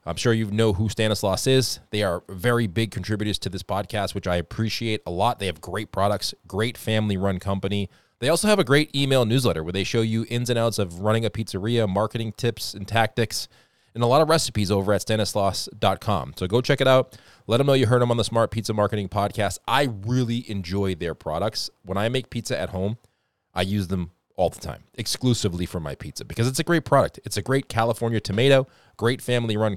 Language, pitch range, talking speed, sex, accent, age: English, 100-120 Hz, 215 wpm, male, American, 20-39